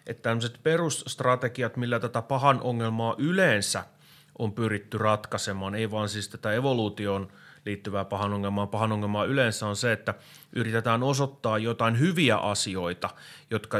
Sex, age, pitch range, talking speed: male, 30-49, 105-125 Hz, 135 wpm